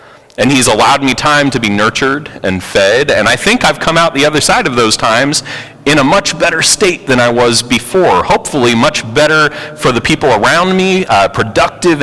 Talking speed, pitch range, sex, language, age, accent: 205 wpm, 100-150 Hz, male, English, 30-49, American